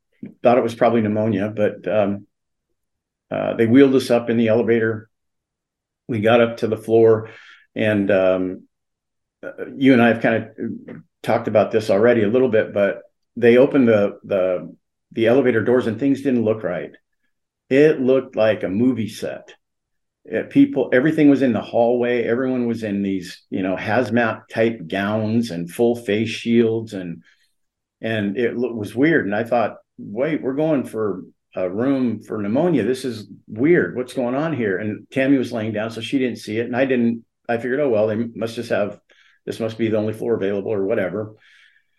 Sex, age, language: male, 50-69, English